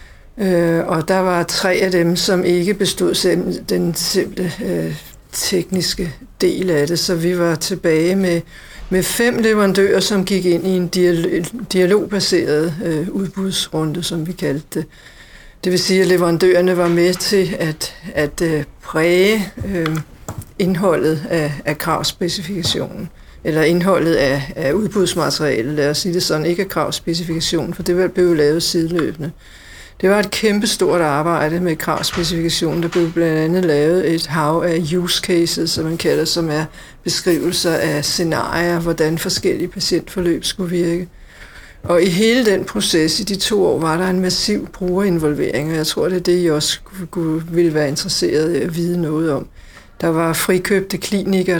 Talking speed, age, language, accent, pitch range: 160 wpm, 60-79, Danish, native, 160-185 Hz